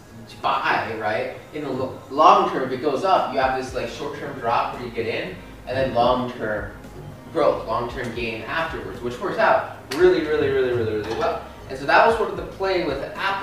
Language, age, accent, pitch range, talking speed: English, 20-39, American, 120-155 Hz, 220 wpm